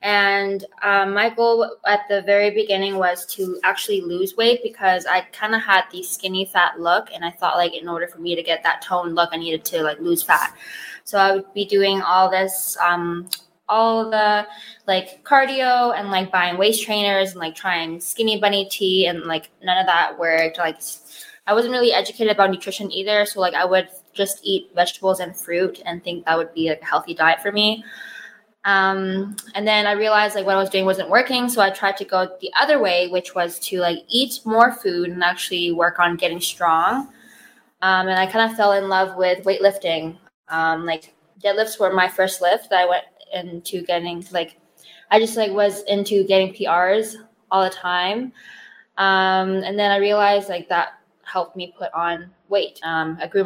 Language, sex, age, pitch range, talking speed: English, female, 20-39, 175-210 Hz, 200 wpm